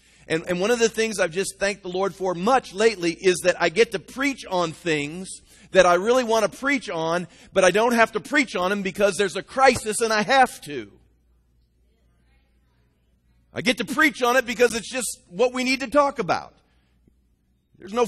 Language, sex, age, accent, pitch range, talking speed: English, male, 40-59, American, 145-230 Hz, 205 wpm